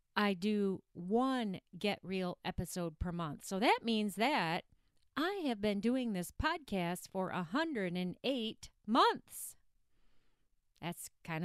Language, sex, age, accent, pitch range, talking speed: English, female, 40-59, American, 190-250 Hz, 120 wpm